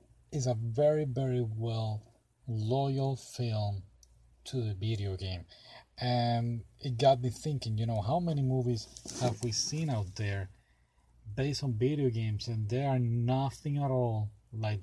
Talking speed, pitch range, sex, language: 150 wpm, 105-125 Hz, male, English